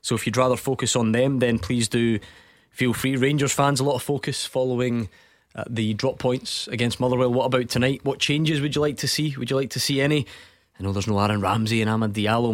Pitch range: 110-135 Hz